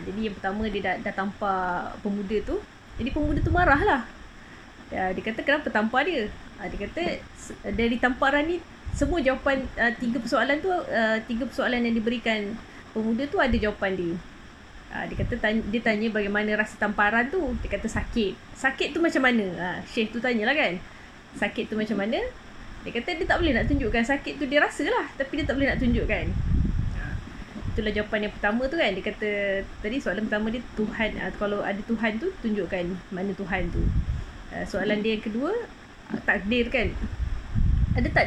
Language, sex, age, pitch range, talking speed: Malay, female, 20-39, 205-260 Hz, 175 wpm